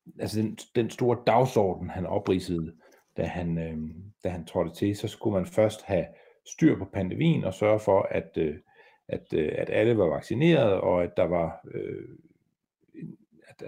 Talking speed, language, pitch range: 165 wpm, Danish, 95-120 Hz